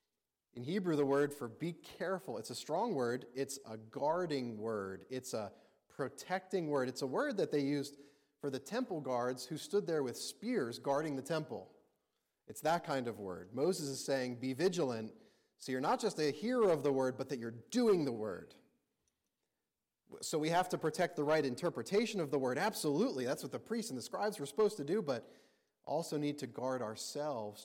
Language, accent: English, American